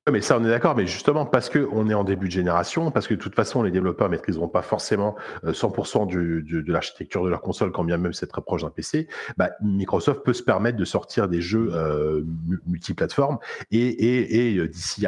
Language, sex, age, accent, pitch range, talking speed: French, male, 40-59, French, 90-115 Hz, 225 wpm